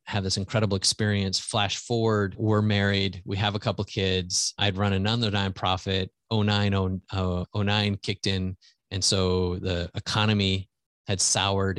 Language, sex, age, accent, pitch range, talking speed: English, male, 30-49, American, 95-110 Hz, 135 wpm